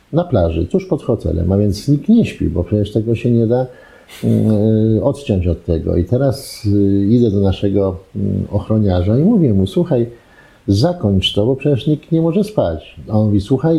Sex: male